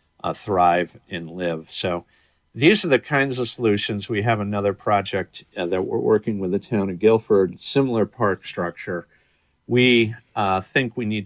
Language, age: English, 50-69